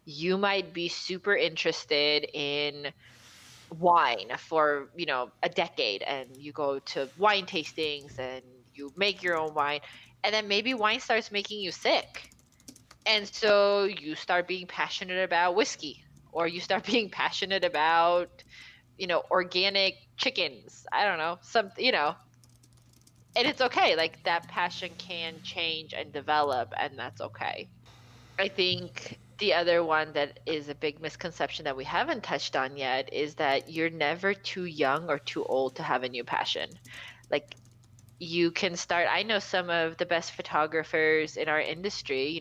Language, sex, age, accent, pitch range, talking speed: English, female, 20-39, American, 145-180 Hz, 160 wpm